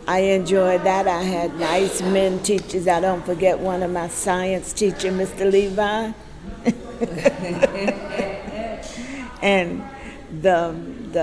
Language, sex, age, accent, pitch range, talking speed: English, female, 60-79, American, 180-200 Hz, 110 wpm